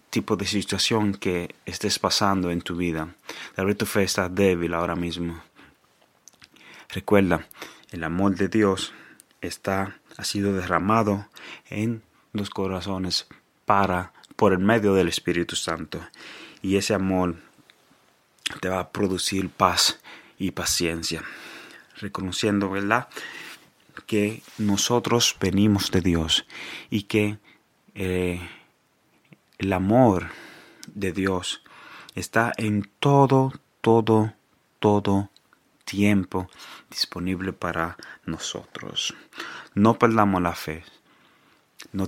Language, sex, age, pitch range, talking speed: Swedish, male, 30-49, 90-105 Hz, 105 wpm